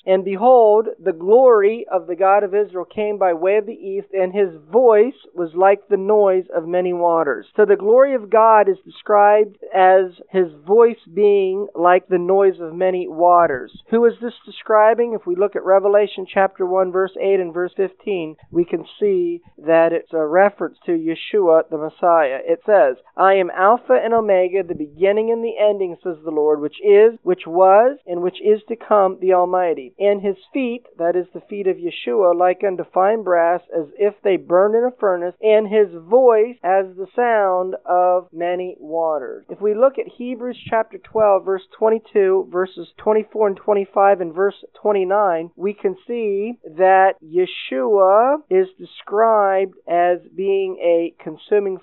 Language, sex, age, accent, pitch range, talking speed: English, male, 40-59, American, 180-220 Hz, 175 wpm